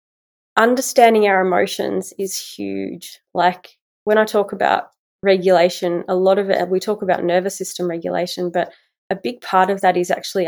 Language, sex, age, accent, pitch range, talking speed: English, female, 20-39, Australian, 180-200 Hz, 165 wpm